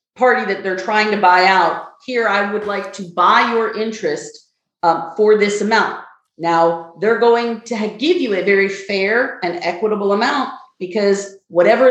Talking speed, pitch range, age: 165 wpm, 175-235 Hz, 40-59